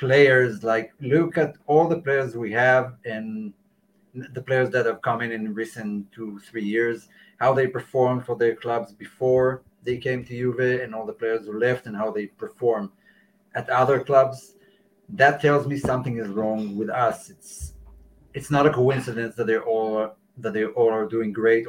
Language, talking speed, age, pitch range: English, 185 wpm, 30-49, 115-145 Hz